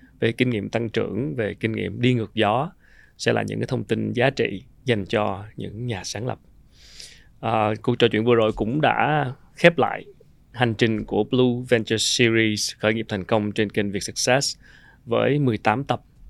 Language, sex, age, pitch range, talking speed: Vietnamese, male, 20-39, 110-130 Hz, 190 wpm